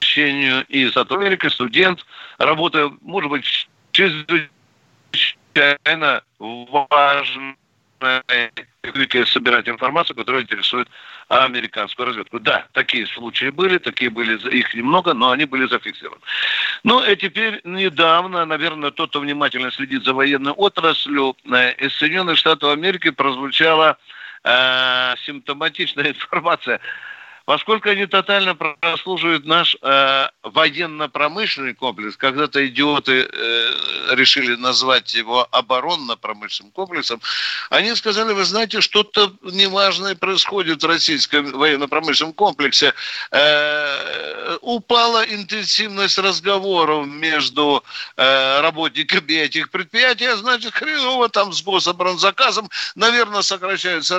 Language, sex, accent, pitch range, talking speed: Russian, male, native, 140-200 Hz, 100 wpm